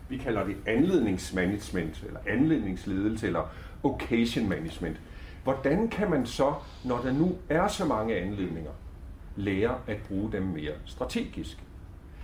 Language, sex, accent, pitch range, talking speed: Danish, male, native, 85-115 Hz, 125 wpm